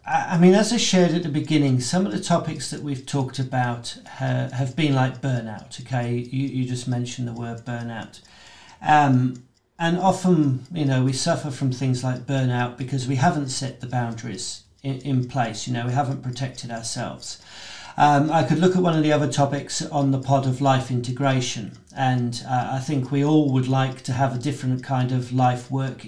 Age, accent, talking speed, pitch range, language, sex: 40-59, British, 200 wpm, 125-145 Hz, English, male